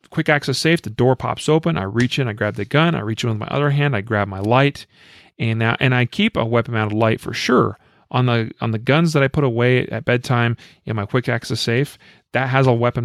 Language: English